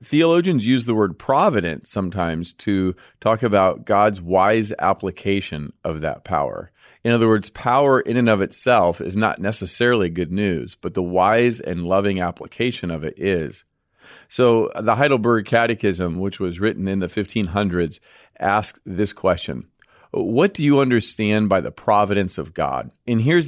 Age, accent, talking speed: 40-59, American, 155 wpm